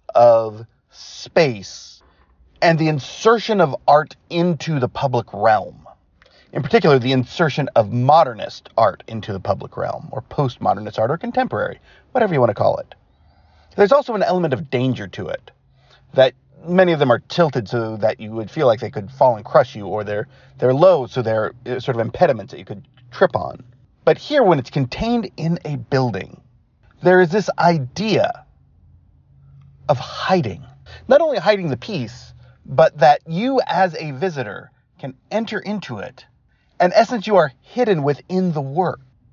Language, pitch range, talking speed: English, 115-170 Hz, 170 wpm